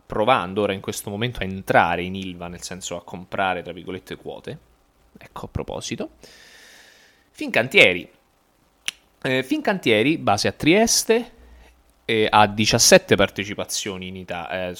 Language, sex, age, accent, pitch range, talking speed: Italian, male, 20-39, native, 85-130 Hz, 125 wpm